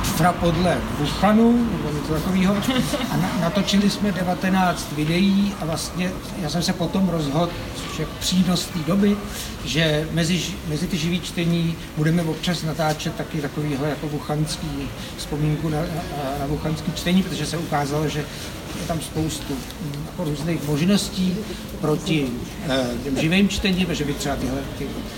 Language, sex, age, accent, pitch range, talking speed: Czech, male, 60-79, native, 145-175 Hz, 130 wpm